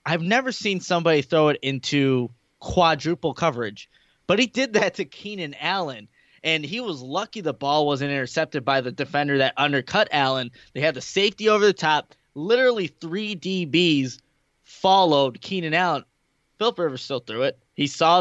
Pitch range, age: 145-185 Hz, 20-39